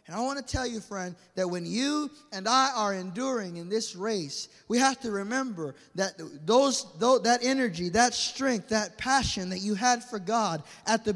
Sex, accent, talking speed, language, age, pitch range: male, American, 185 wpm, English, 20-39, 220-280 Hz